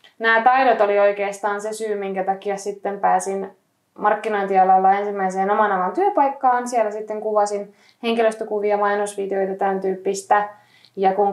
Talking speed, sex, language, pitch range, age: 125 wpm, female, Finnish, 190-230 Hz, 20-39